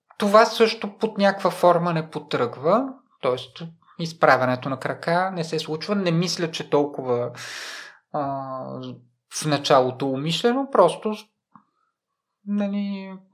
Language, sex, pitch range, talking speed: Bulgarian, male, 135-185 Hz, 110 wpm